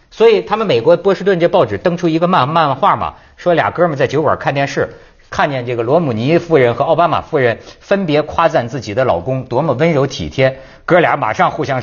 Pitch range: 135-195 Hz